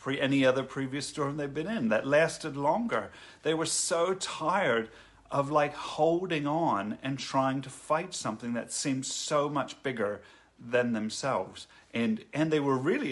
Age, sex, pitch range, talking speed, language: 40-59, male, 120-160 Hz, 160 wpm, English